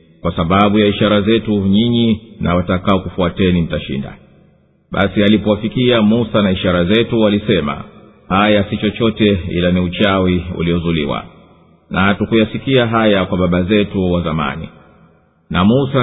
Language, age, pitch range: English, 50-69, 90-110 Hz